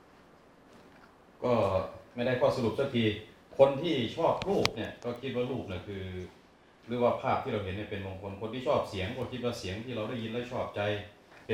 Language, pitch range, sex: Thai, 100-120 Hz, male